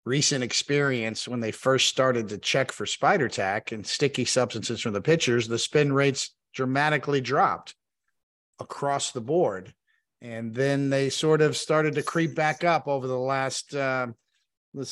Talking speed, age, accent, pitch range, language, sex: 160 wpm, 50-69, American, 125-150 Hz, English, male